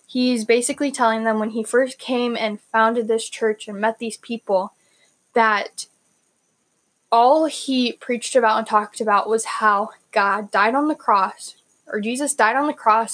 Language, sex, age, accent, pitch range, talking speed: English, female, 10-29, American, 215-255 Hz, 170 wpm